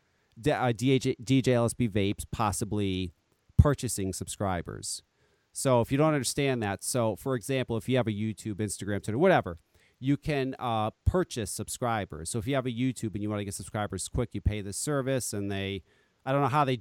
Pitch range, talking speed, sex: 105-145 Hz, 195 wpm, male